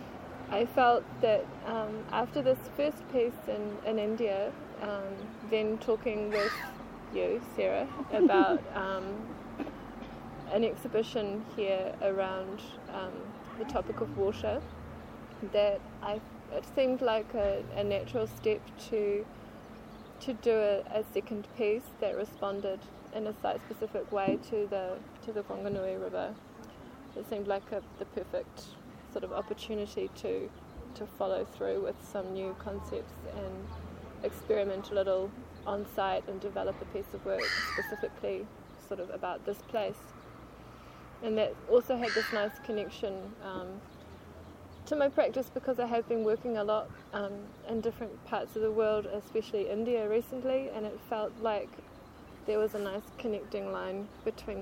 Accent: Australian